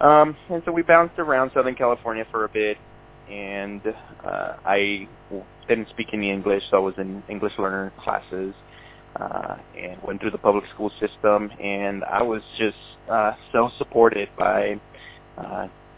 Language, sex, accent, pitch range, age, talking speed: English, male, American, 95-115 Hz, 20-39, 160 wpm